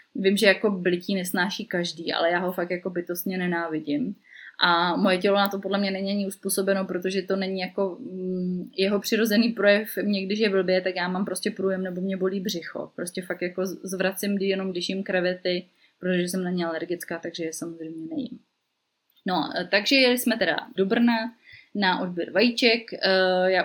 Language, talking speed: Czech, 175 wpm